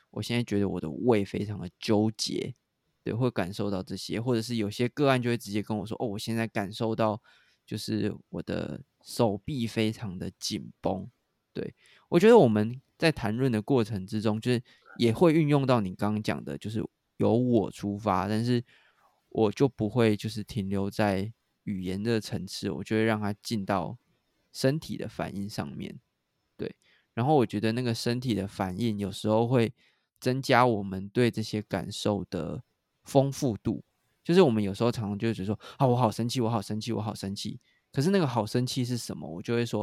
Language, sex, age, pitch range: Chinese, male, 20-39, 105-125 Hz